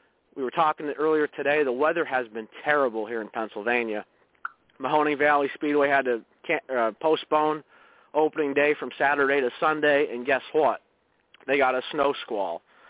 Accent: American